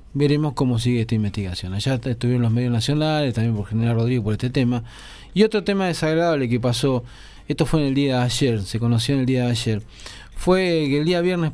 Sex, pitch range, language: male, 115-150 Hz, Spanish